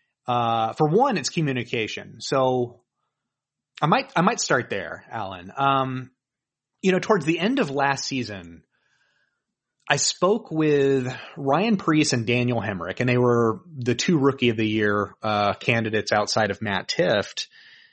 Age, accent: 30-49, American